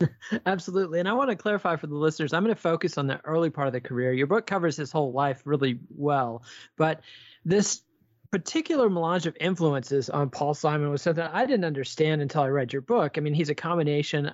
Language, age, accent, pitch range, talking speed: English, 40-59, American, 145-190 Hz, 220 wpm